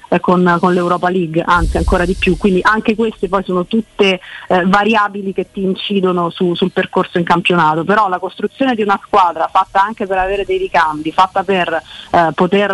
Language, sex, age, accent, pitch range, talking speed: Italian, female, 30-49, native, 175-205 Hz, 190 wpm